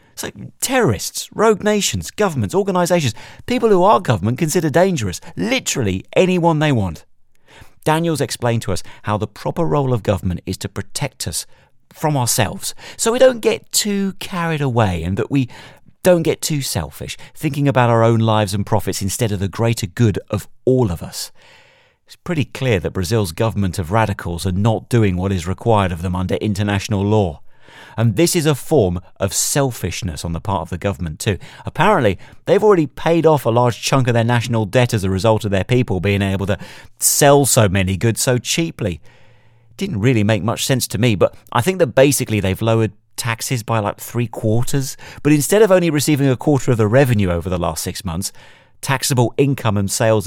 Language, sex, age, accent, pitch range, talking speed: English, male, 40-59, British, 100-145 Hz, 190 wpm